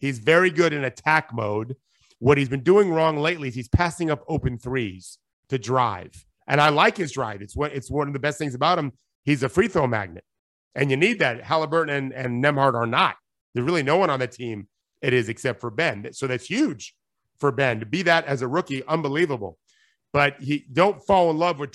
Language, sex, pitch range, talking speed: English, male, 120-160 Hz, 225 wpm